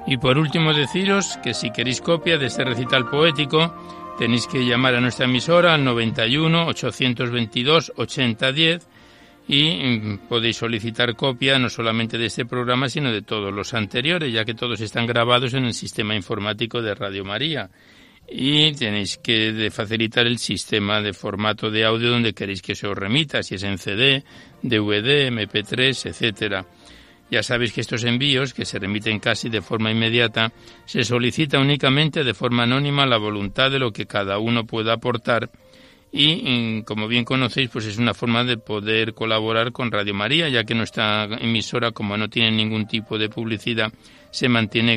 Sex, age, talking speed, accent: male, 60-79, 165 wpm, Spanish